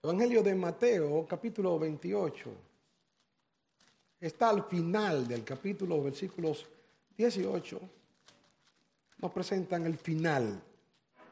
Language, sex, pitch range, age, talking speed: Spanish, male, 145-200 Hz, 50-69, 85 wpm